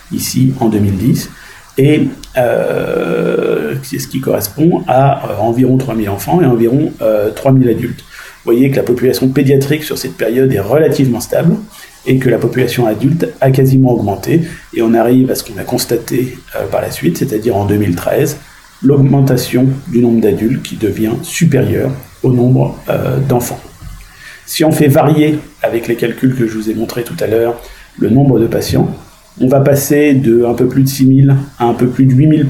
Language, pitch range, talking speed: French, 115-135 Hz, 185 wpm